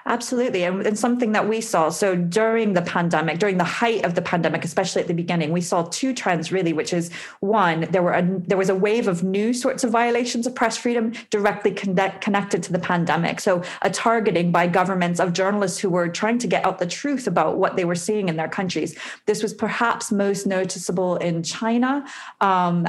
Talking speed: 210 wpm